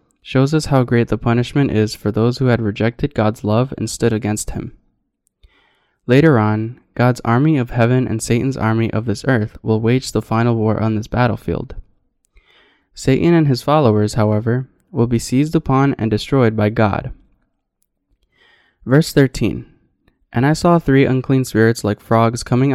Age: 20-39